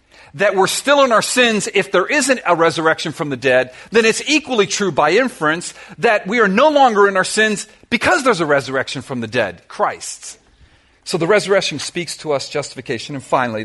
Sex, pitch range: male, 140-205 Hz